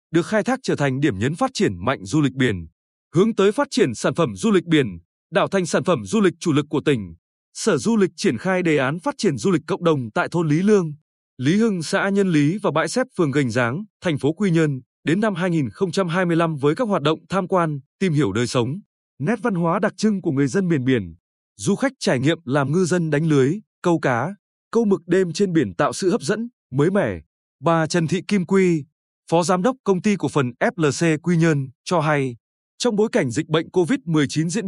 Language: Vietnamese